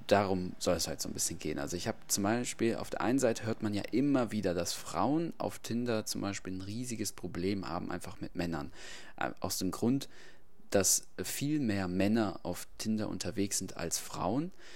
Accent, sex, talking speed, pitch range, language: German, male, 195 wpm, 90-110 Hz, German